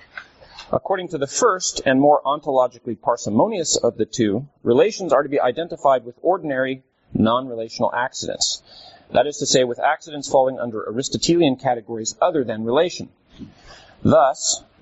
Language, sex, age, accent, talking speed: English, male, 40-59, American, 140 wpm